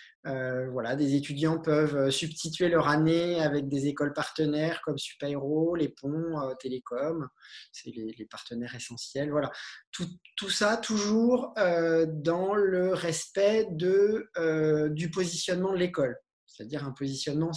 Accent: French